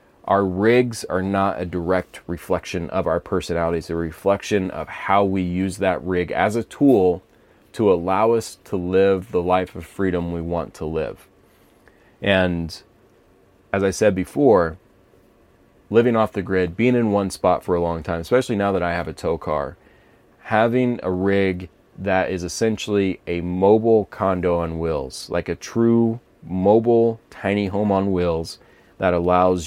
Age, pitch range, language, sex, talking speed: 30-49, 85-100 Hz, English, male, 160 wpm